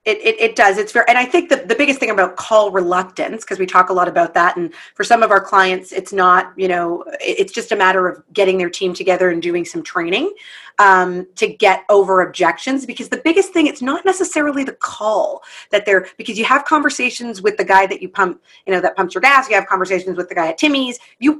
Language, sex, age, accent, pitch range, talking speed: English, female, 30-49, American, 185-265 Hz, 245 wpm